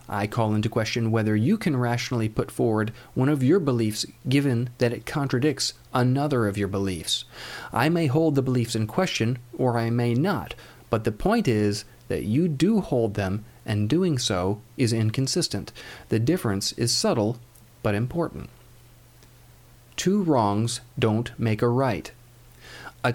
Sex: male